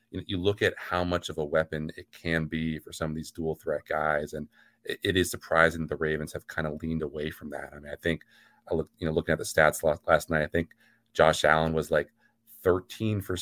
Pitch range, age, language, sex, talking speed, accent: 80-85 Hz, 30-49, English, male, 230 wpm, American